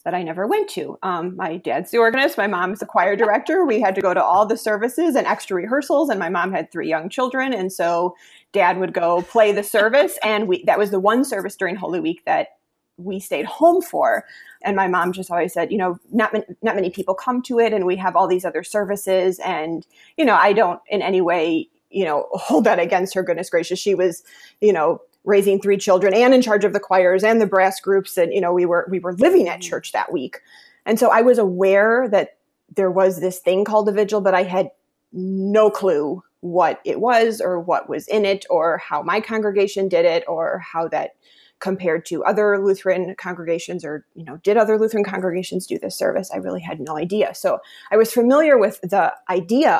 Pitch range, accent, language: 185-225 Hz, American, English